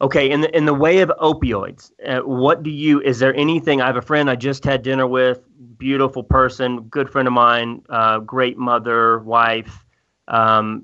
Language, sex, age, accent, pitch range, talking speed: English, male, 30-49, American, 115-130 Hz, 190 wpm